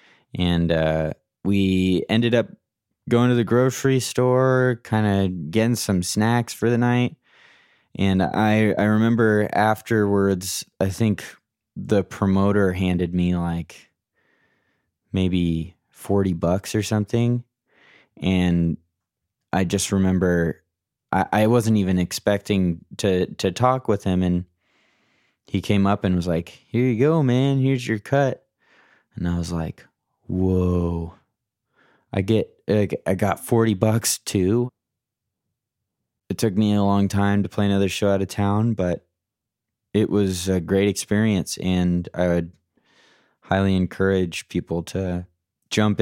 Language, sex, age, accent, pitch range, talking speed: English, male, 20-39, American, 90-110 Hz, 135 wpm